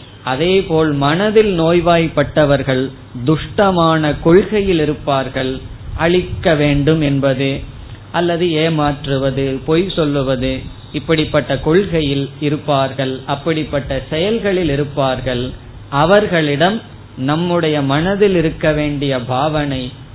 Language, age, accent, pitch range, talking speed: Tamil, 20-39, native, 135-175 Hz, 75 wpm